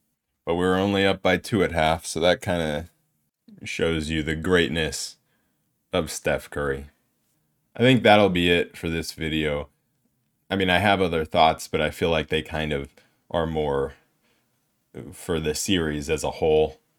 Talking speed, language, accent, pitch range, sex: 175 wpm, English, American, 75-90 Hz, male